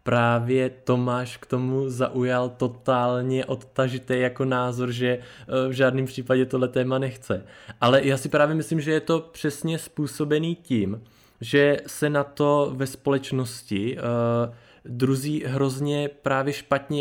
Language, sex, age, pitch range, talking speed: Czech, male, 20-39, 120-135 Hz, 130 wpm